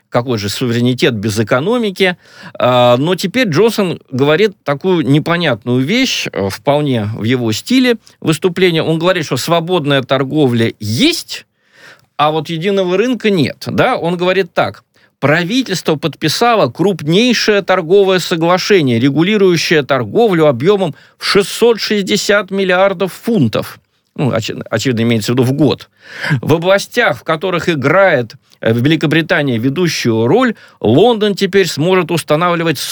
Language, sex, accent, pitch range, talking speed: Russian, male, native, 125-185 Hz, 115 wpm